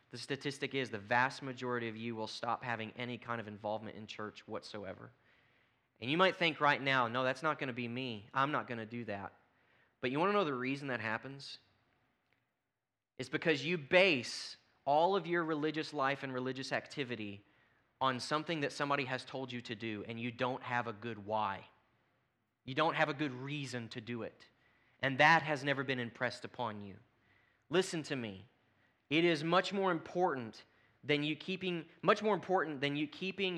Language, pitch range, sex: English, 115-155 Hz, male